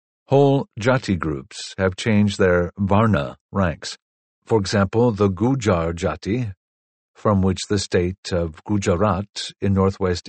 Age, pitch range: 50-69, 95-115 Hz